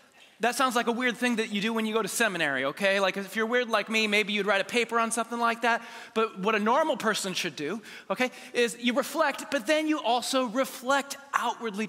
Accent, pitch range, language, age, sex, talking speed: American, 205-245 Hz, English, 30-49, male, 235 wpm